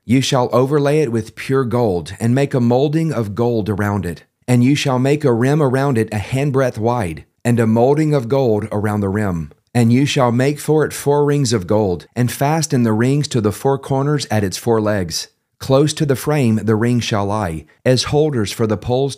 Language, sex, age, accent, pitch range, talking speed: English, male, 40-59, American, 110-135 Hz, 215 wpm